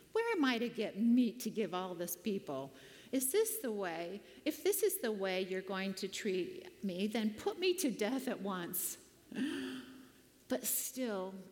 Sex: female